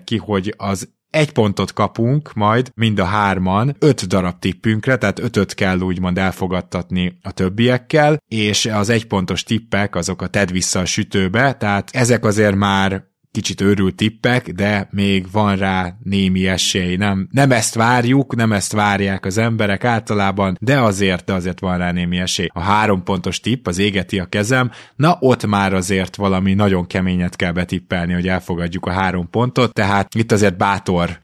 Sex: male